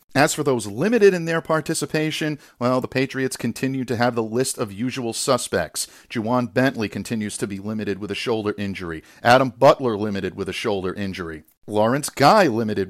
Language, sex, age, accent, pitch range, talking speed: English, male, 50-69, American, 110-145 Hz, 175 wpm